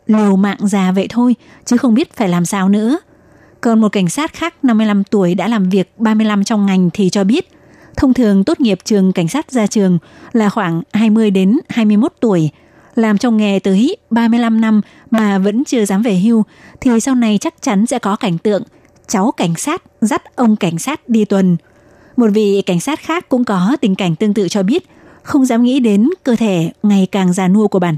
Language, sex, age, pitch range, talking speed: Vietnamese, female, 20-39, 190-230 Hz, 210 wpm